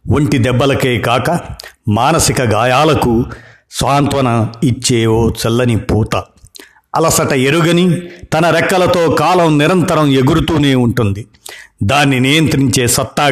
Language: Telugu